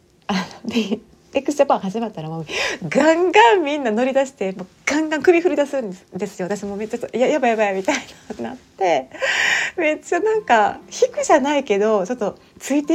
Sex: female